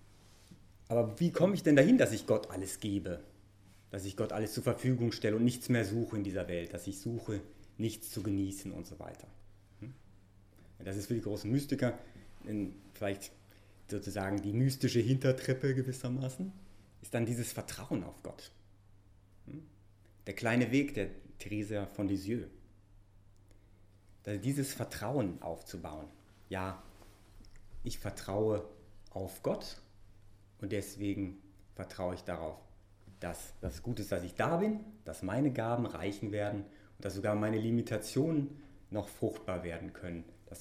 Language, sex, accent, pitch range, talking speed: English, male, German, 100-110 Hz, 140 wpm